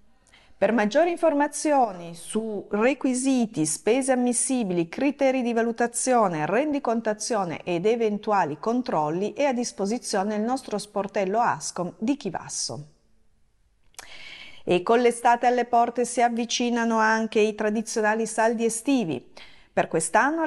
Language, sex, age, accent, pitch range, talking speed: Italian, female, 40-59, native, 195-250 Hz, 110 wpm